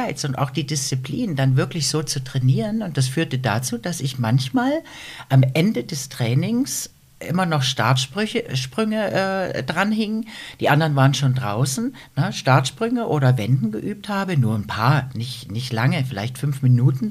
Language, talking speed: German, 160 wpm